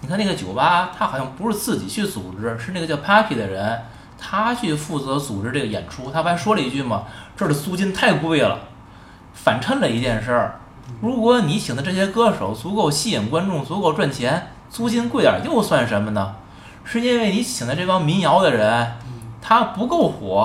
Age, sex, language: 20-39, male, Chinese